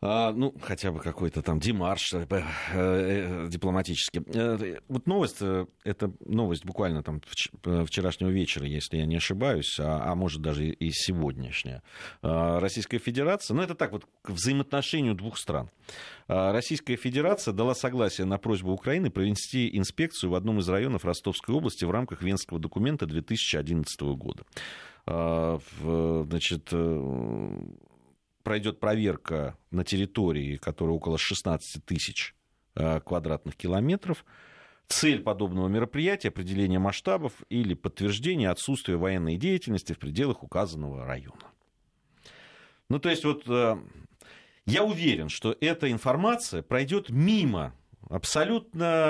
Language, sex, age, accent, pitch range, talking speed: Russian, male, 40-59, native, 80-115 Hz, 115 wpm